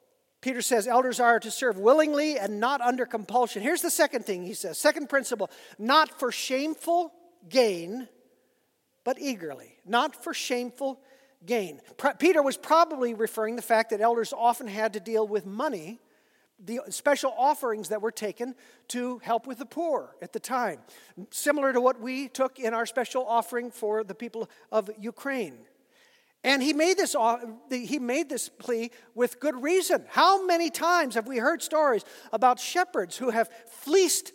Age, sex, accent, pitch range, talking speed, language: 50-69, male, American, 240-325 Hz, 165 wpm, English